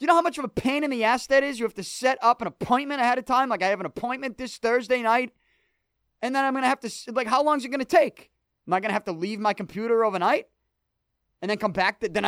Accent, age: American, 30-49